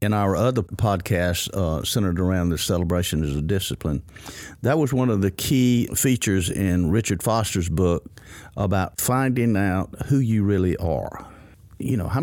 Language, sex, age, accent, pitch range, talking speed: English, male, 50-69, American, 90-115 Hz, 160 wpm